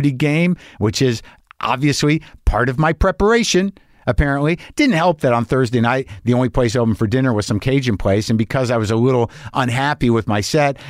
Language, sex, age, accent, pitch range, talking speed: English, male, 50-69, American, 110-140 Hz, 195 wpm